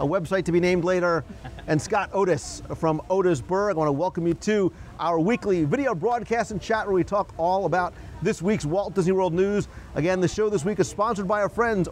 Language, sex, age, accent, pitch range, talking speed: English, male, 40-59, American, 150-195 Hz, 220 wpm